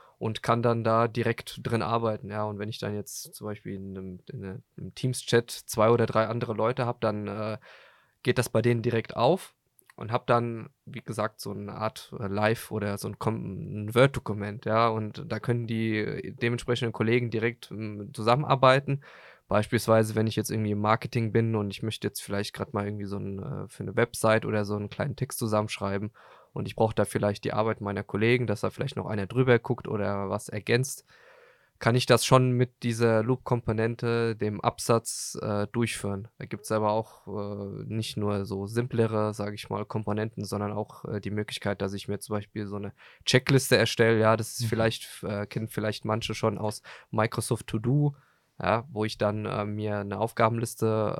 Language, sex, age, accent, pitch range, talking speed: German, male, 20-39, German, 105-120 Hz, 190 wpm